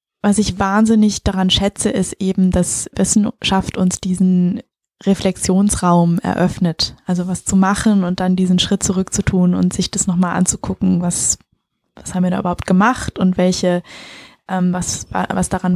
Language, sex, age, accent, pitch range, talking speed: German, female, 20-39, German, 180-200 Hz, 150 wpm